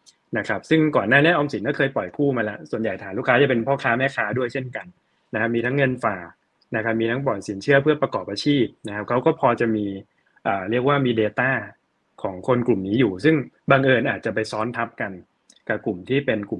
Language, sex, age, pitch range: Thai, male, 20-39, 110-135 Hz